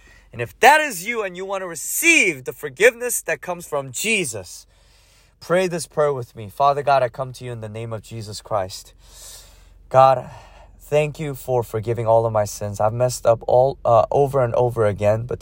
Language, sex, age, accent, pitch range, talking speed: English, male, 30-49, American, 95-125 Hz, 200 wpm